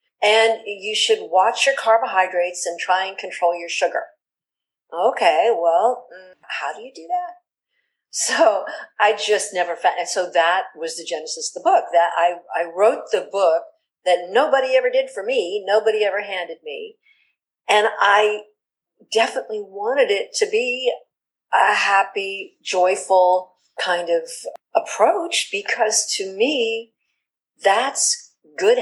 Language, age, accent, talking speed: English, 50-69, American, 140 wpm